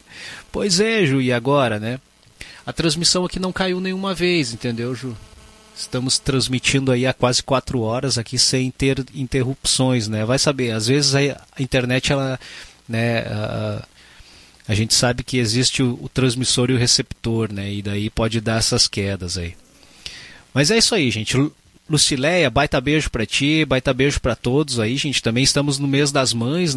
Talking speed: 175 wpm